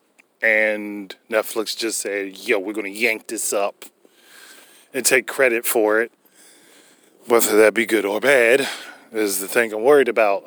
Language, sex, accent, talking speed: English, male, American, 160 wpm